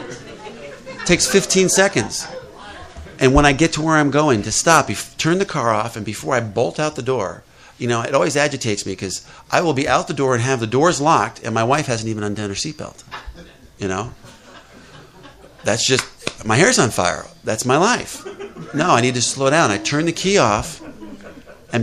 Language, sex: English, male